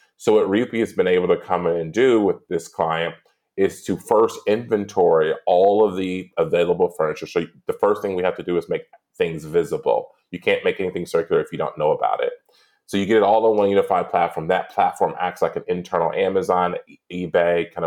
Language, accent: English, American